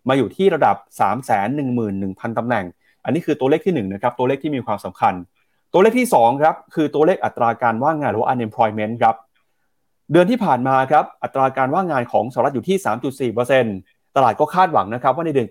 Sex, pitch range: male, 120-165 Hz